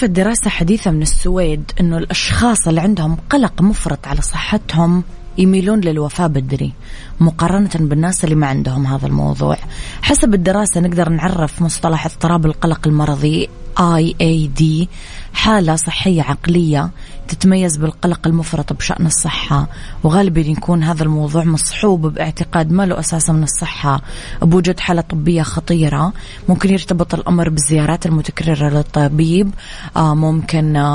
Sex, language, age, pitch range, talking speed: female, English, 20-39, 155-180 Hz, 120 wpm